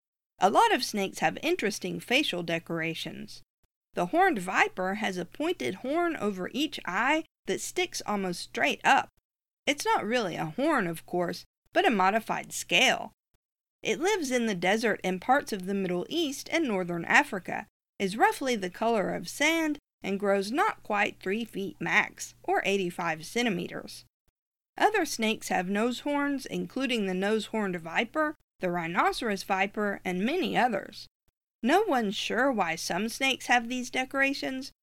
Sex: female